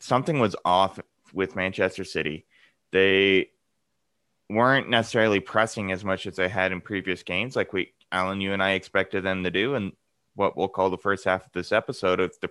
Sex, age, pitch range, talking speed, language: male, 20-39, 95-115 Hz, 190 wpm, English